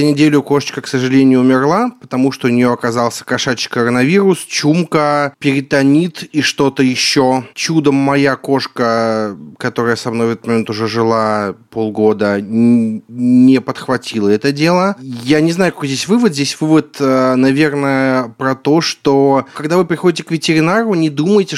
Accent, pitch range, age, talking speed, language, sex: native, 120-145 Hz, 30-49, 145 wpm, Russian, male